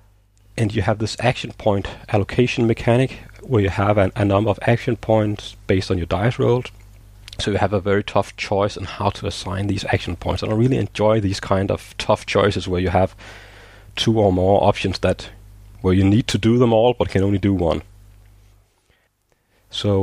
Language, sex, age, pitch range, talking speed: English, male, 30-49, 100-115 Hz, 200 wpm